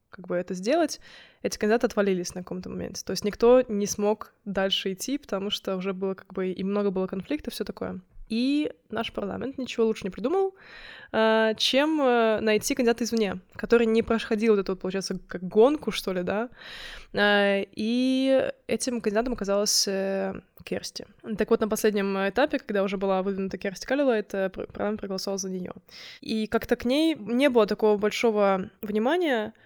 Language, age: Russian, 20-39